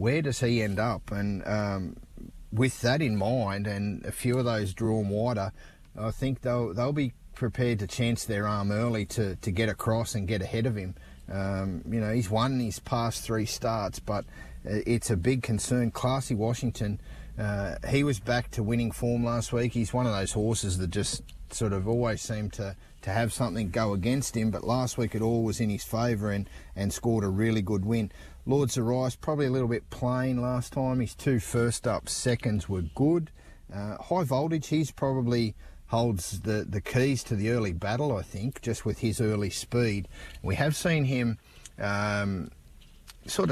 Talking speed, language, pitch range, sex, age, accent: 190 wpm, English, 100-120 Hz, male, 30-49, Australian